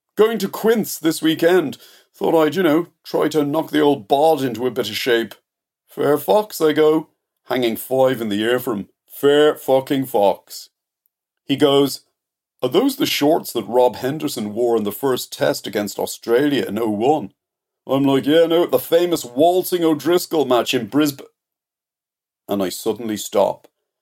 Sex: male